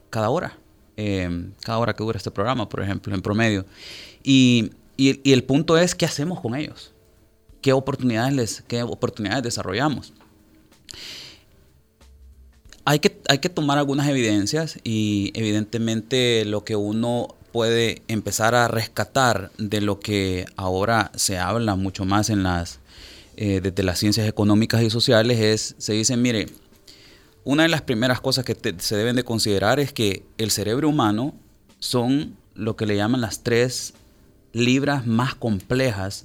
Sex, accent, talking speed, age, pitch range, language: male, Venezuelan, 150 wpm, 30-49, 105-130 Hz, Spanish